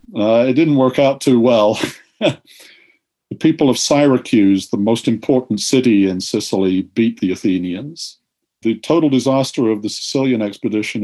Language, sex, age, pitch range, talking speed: English, male, 50-69, 105-130 Hz, 145 wpm